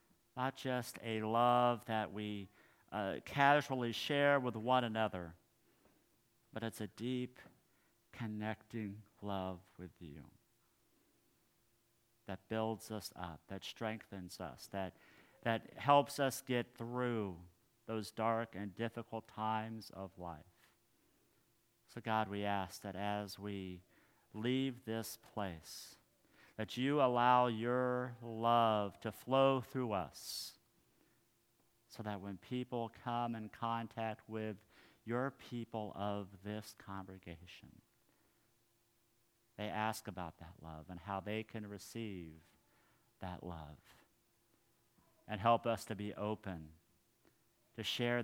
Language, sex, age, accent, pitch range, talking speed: English, male, 50-69, American, 95-120 Hz, 115 wpm